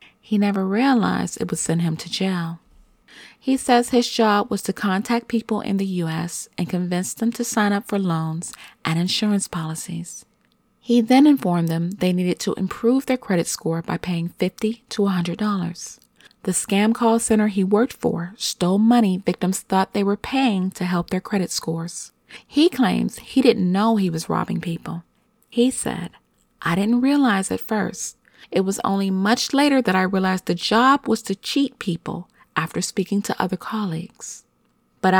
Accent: American